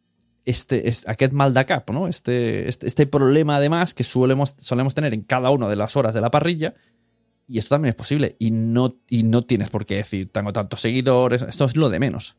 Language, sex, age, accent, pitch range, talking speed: Spanish, male, 30-49, Spanish, 110-140 Hz, 205 wpm